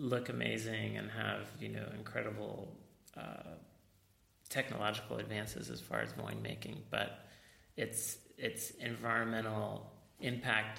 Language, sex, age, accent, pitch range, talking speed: English, male, 30-49, American, 105-115 Hz, 110 wpm